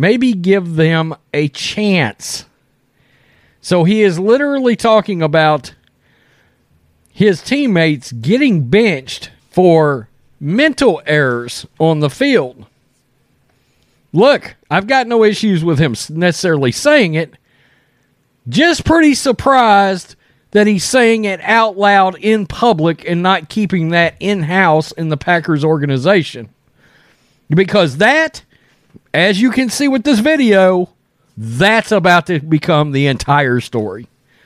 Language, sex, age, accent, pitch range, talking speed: English, male, 40-59, American, 140-200 Hz, 115 wpm